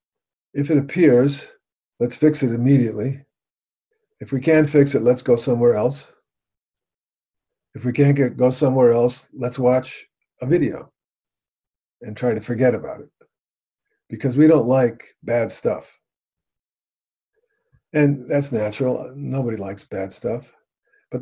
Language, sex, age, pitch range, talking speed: English, male, 50-69, 110-140 Hz, 130 wpm